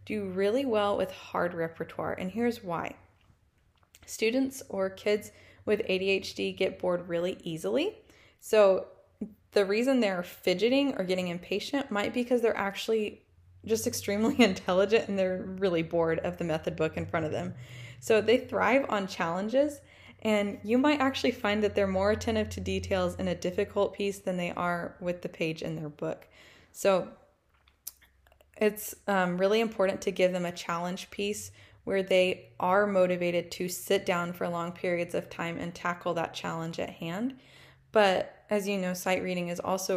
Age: 20-39